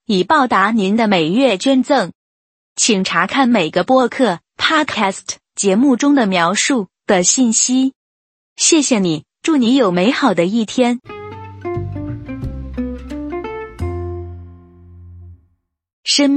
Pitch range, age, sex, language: 190-275 Hz, 20-39, female, Chinese